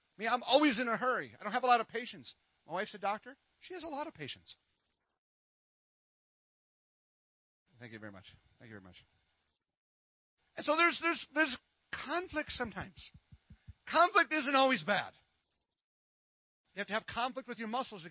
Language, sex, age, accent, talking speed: English, male, 40-59, American, 165 wpm